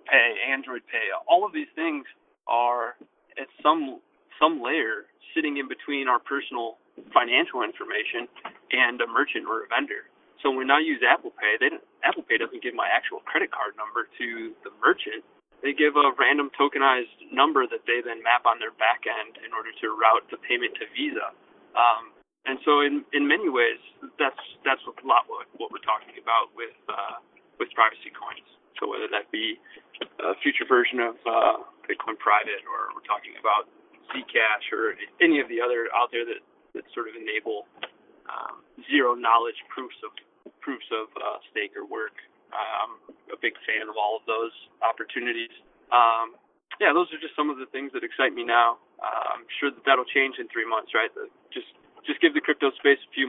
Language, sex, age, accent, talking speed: English, male, 20-39, American, 185 wpm